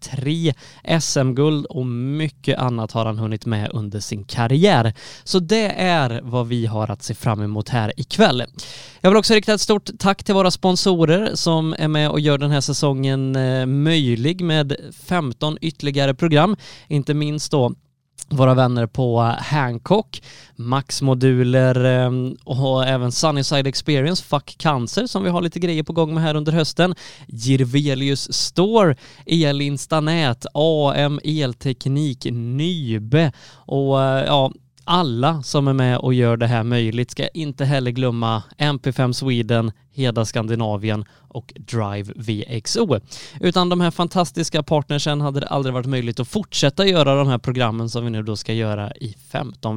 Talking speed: 150 wpm